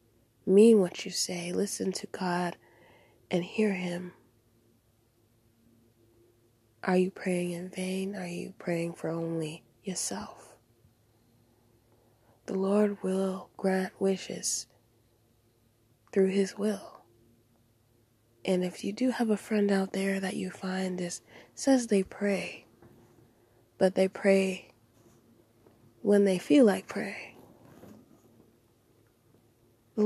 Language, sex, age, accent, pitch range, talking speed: English, female, 20-39, American, 115-195 Hz, 105 wpm